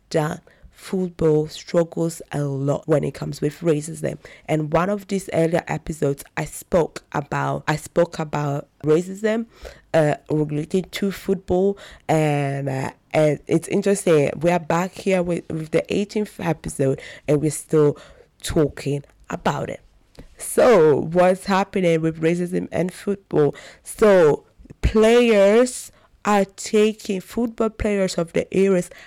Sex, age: female, 20-39